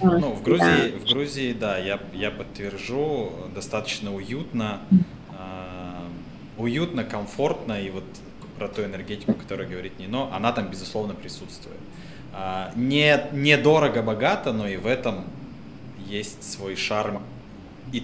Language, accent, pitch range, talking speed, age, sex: Russian, native, 95-125 Hz, 130 wpm, 20-39, male